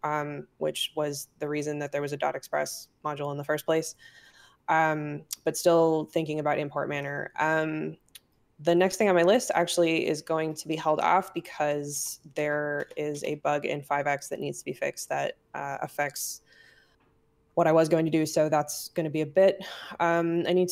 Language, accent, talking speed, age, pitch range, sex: English, American, 195 wpm, 20-39, 150-170 Hz, female